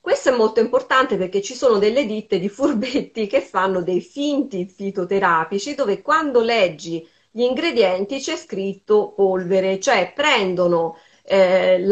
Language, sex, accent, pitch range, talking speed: Italian, female, native, 175-200 Hz, 135 wpm